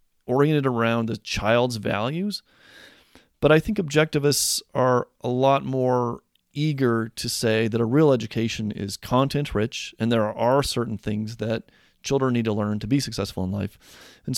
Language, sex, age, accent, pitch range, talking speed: English, male, 30-49, American, 110-145 Hz, 165 wpm